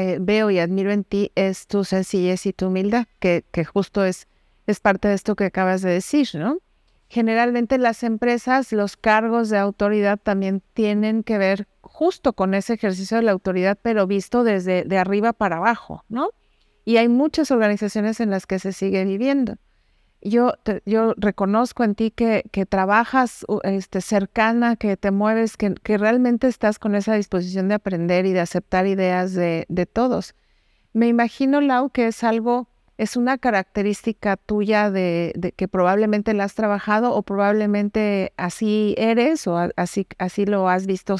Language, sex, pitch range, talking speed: Spanish, female, 195-230 Hz, 165 wpm